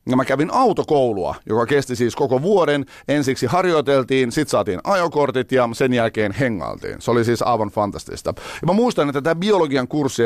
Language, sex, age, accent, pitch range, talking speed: Finnish, male, 50-69, native, 115-145 Hz, 175 wpm